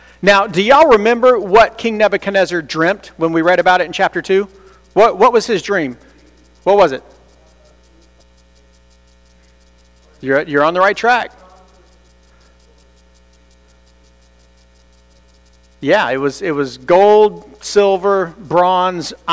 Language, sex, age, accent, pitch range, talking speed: English, male, 40-59, American, 150-220 Hz, 120 wpm